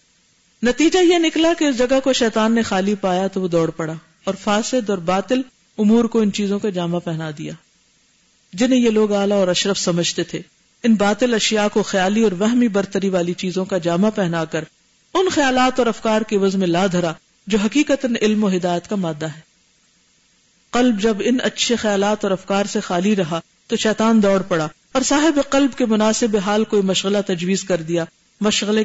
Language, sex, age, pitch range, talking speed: Urdu, female, 50-69, 180-230 Hz, 190 wpm